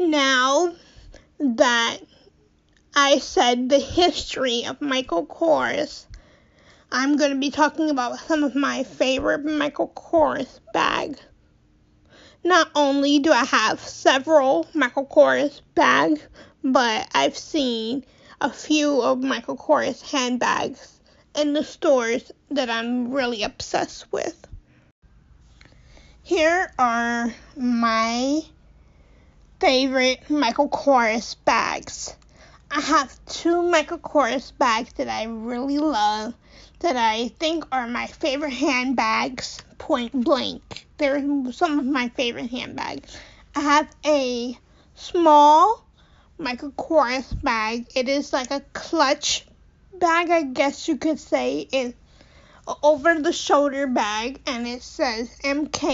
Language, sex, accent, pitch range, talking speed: English, female, American, 250-300 Hz, 115 wpm